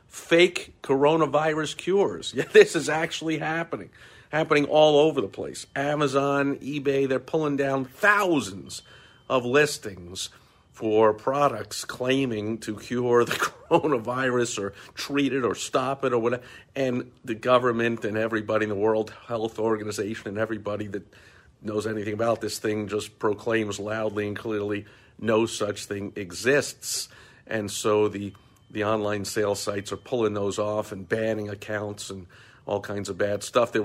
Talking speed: 145 wpm